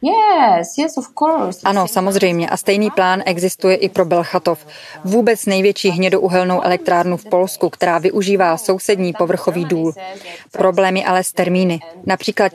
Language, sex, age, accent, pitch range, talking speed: Czech, female, 20-39, native, 180-205 Hz, 120 wpm